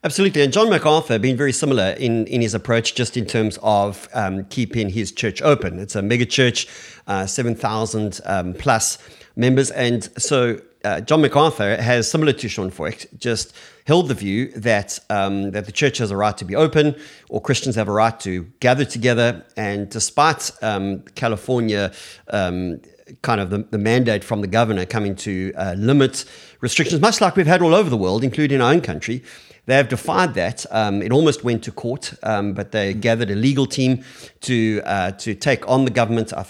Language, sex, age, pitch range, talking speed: English, male, 40-59, 105-135 Hz, 190 wpm